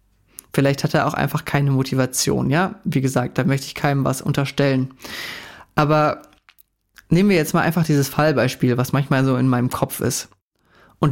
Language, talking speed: German, 175 wpm